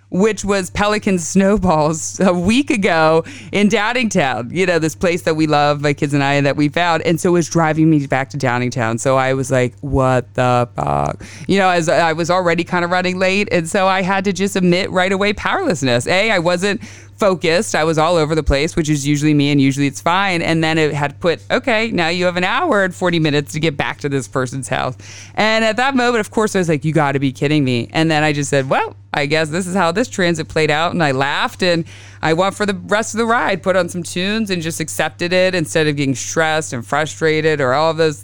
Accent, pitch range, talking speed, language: American, 135-185 Hz, 250 wpm, English